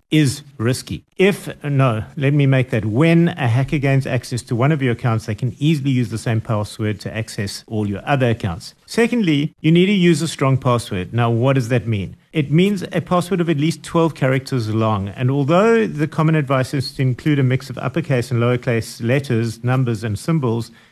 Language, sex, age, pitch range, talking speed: English, male, 50-69, 115-145 Hz, 205 wpm